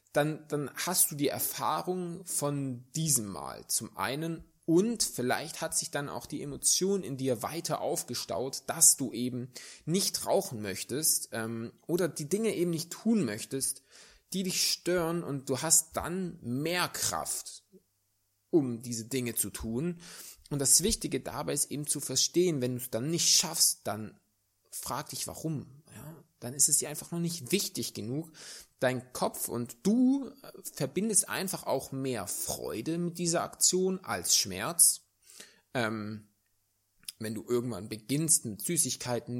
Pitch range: 115-165 Hz